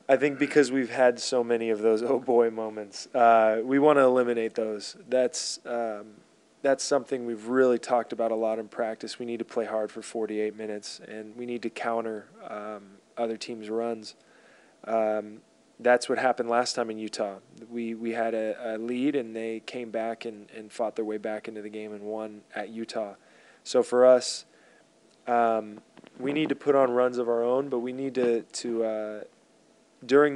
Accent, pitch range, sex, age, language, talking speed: American, 110-120 Hz, male, 20-39, English, 195 wpm